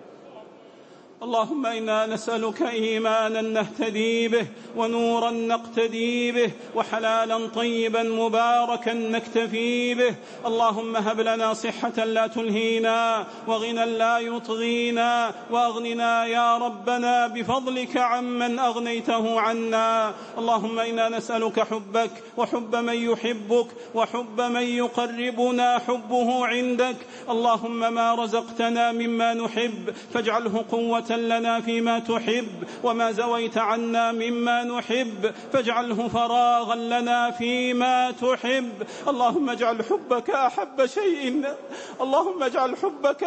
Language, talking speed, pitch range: English, 95 wpm, 225-245 Hz